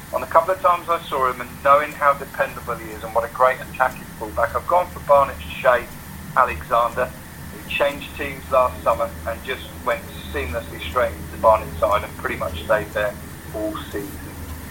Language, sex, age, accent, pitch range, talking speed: English, male, 40-59, British, 95-130 Hz, 190 wpm